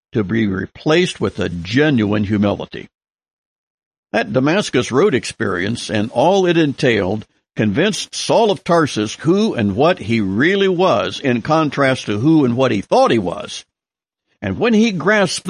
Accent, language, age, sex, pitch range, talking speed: American, English, 60-79, male, 110-160 Hz, 150 wpm